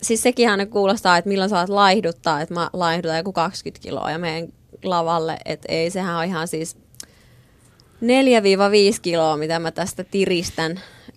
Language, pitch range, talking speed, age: Finnish, 160-195 Hz, 150 wpm, 20-39